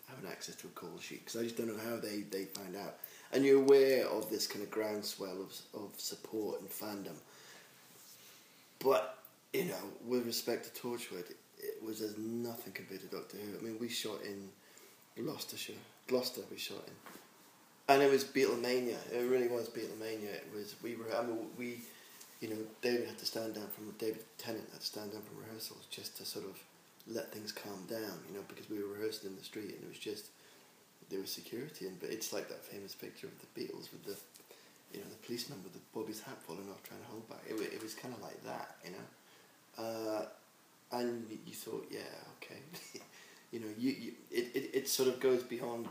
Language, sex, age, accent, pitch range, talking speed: English, male, 20-39, British, 105-120 Hz, 210 wpm